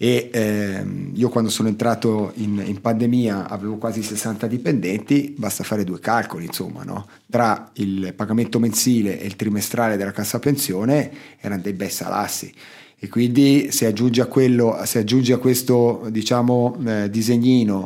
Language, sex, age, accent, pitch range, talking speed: Italian, male, 30-49, native, 105-125 Hz, 155 wpm